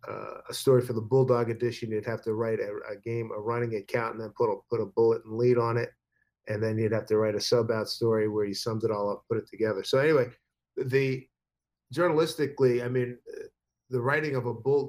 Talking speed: 235 wpm